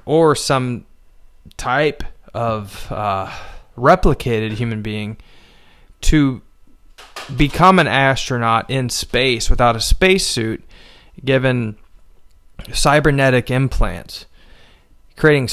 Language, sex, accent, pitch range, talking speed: English, male, American, 110-140 Hz, 80 wpm